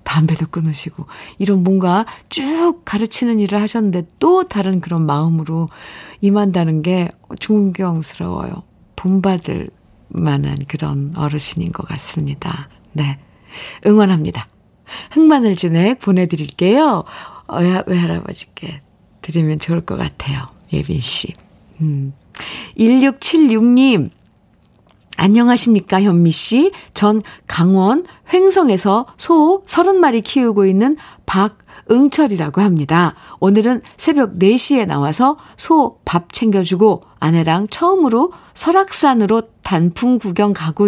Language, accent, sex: Korean, native, female